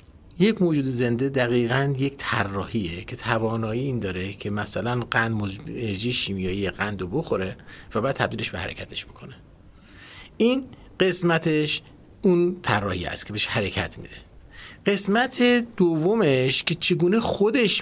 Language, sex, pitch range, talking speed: Persian, male, 105-155 Hz, 130 wpm